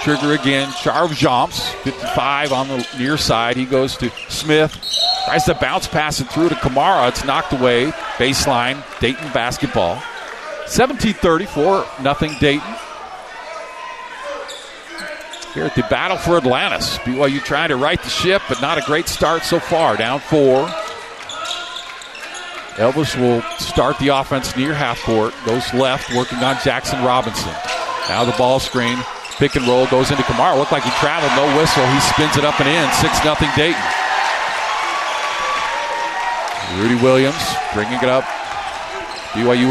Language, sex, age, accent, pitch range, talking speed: English, male, 50-69, American, 125-150 Hz, 145 wpm